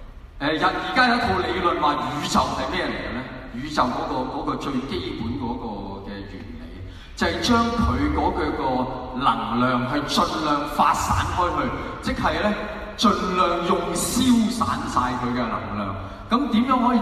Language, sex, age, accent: Chinese, male, 20-39, native